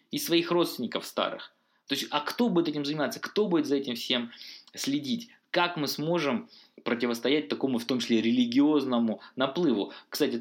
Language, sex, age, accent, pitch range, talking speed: Russian, male, 20-39, native, 115-175 Hz, 160 wpm